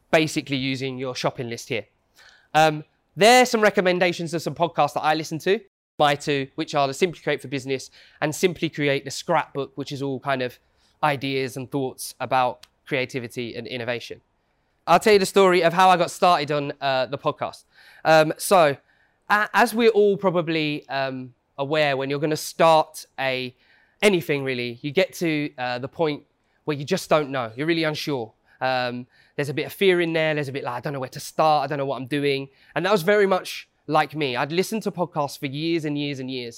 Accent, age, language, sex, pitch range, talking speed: British, 20-39, English, male, 135-165 Hz, 210 wpm